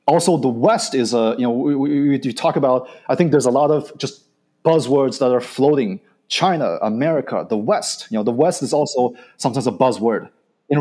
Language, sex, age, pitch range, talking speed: English, male, 30-49, 120-150 Hz, 210 wpm